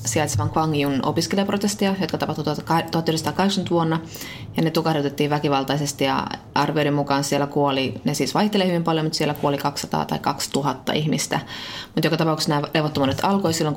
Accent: native